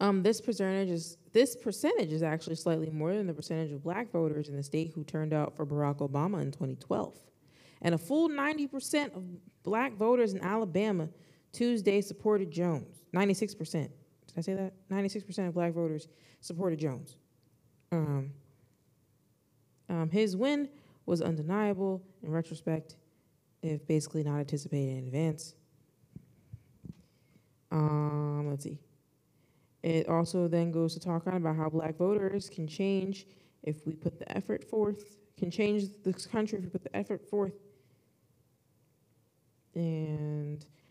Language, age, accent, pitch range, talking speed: English, 20-39, American, 150-195 Hz, 150 wpm